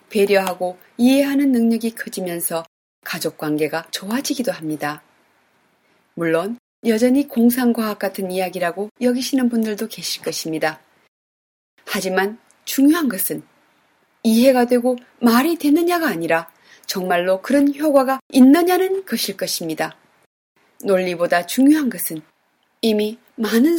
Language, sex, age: Korean, female, 30-49